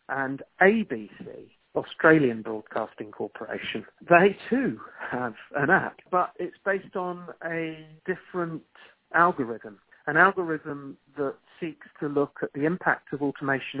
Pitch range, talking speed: 135-170 Hz, 120 wpm